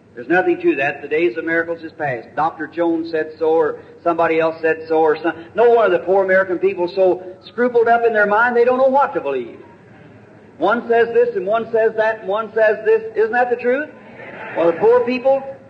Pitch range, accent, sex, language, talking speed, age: 165-240 Hz, American, male, English, 220 wpm, 50-69